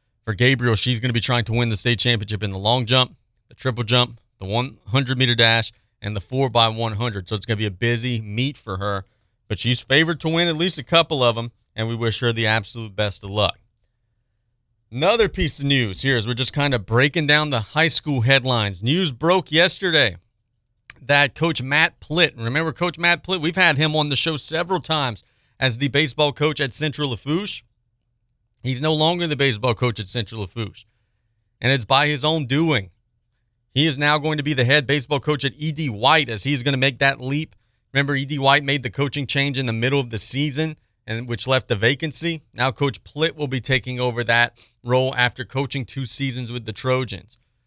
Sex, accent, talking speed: male, American, 210 wpm